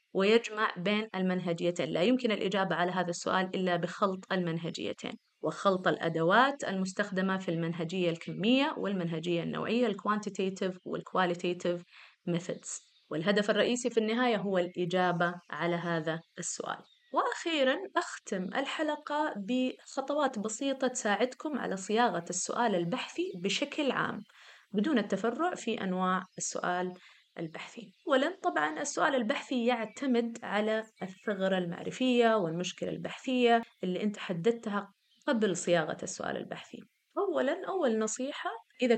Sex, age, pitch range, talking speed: female, 20-39, 180-235 Hz, 110 wpm